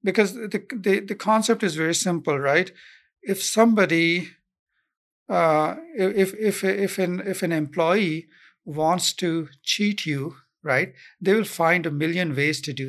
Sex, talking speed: male, 150 wpm